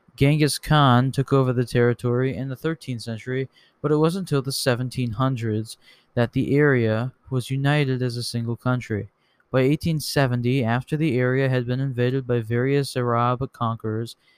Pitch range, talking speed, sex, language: 125-150 Hz, 155 wpm, male, English